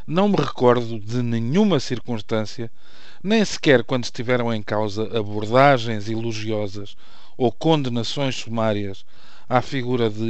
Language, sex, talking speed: Portuguese, male, 115 wpm